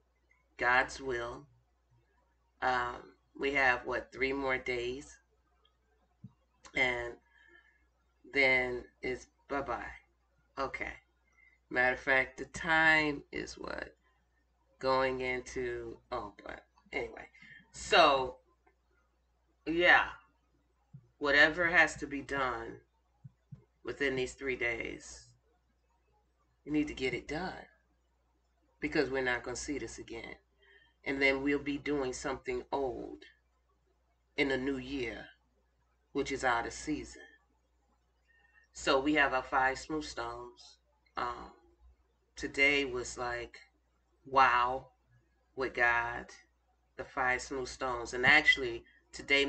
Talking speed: 105 wpm